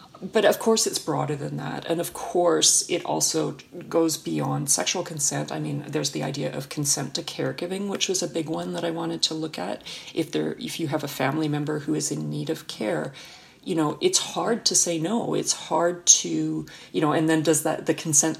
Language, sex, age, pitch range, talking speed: English, female, 40-59, 150-180 Hz, 220 wpm